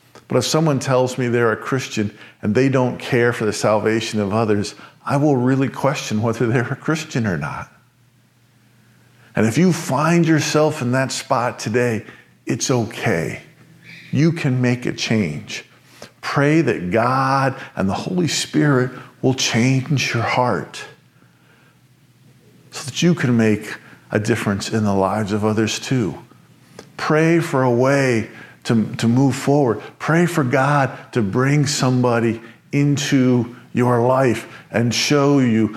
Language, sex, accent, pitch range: English, male, American, 110-135 Hz